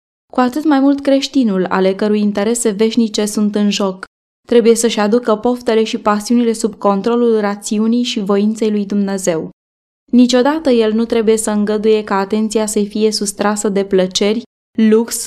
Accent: native